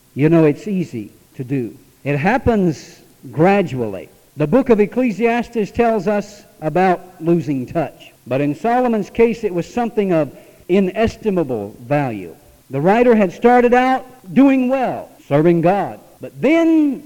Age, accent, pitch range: 60-79, American, 155-245 Hz